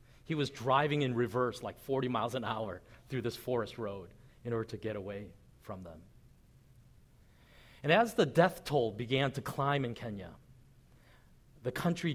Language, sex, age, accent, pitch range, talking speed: English, male, 40-59, American, 110-135 Hz, 165 wpm